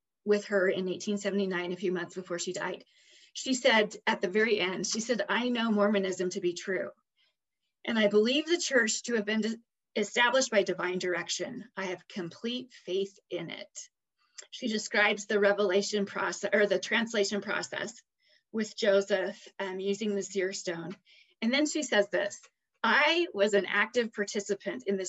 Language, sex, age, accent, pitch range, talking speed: English, female, 30-49, American, 190-230 Hz, 165 wpm